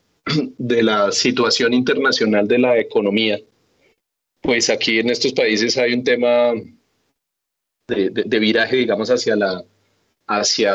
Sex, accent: male, Colombian